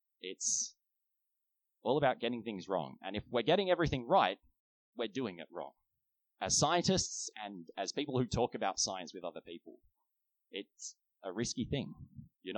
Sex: male